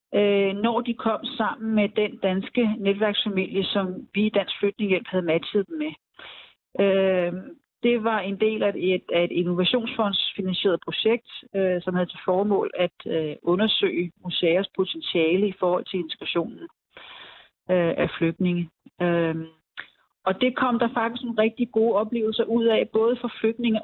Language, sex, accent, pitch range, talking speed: Danish, female, native, 190-225 Hz, 140 wpm